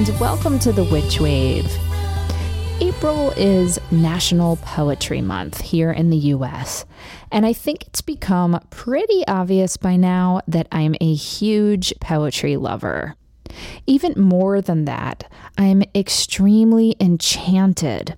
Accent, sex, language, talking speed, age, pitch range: American, female, English, 120 wpm, 20-39, 150-195 Hz